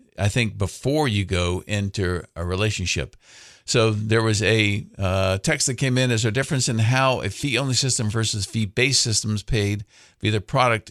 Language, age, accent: English, 50-69, American